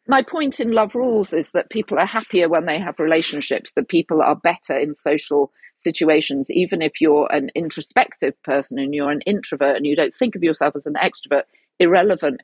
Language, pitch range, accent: English, 145-190 Hz, British